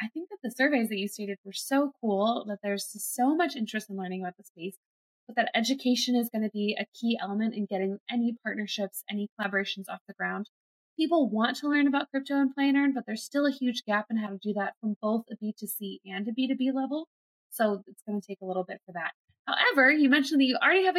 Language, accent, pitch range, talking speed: English, American, 215-285 Hz, 245 wpm